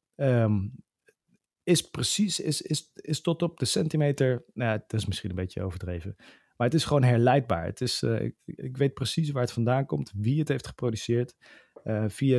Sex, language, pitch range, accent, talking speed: male, Dutch, 110-130 Hz, Dutch, 195 wpm